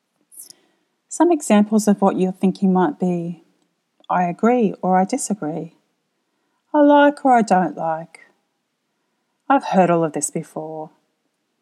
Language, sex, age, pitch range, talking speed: English, female, 40-59, 180-250 Hz, 130 wpm